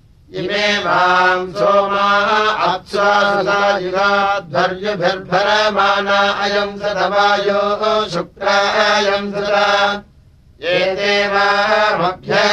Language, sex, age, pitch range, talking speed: Russian, male, 60-79, 195-205 Hz, 75 wpm